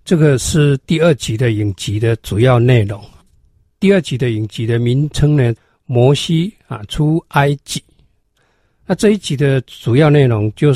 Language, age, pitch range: Chinese, 50-69, 110-150 Hz